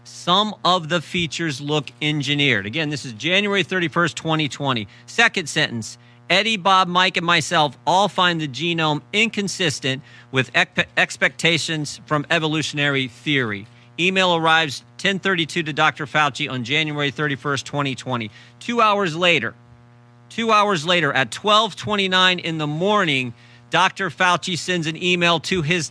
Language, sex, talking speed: English, male, 130 wpm